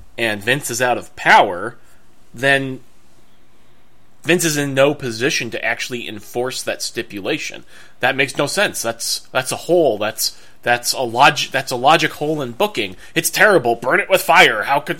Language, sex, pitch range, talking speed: English, male, 130-180 Hz, 170 wpm